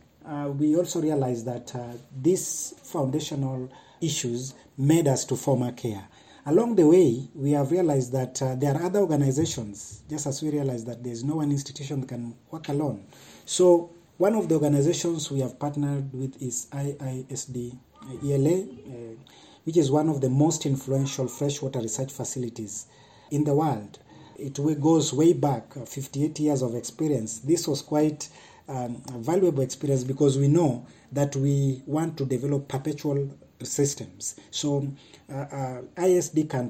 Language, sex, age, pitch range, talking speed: English, male, 40-59, 130-155 Hz, 160 wpm